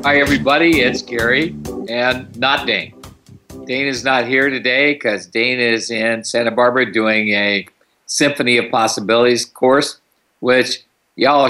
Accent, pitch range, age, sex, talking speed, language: American, 95-125 Hz, 50-69, male, 135 wpm, English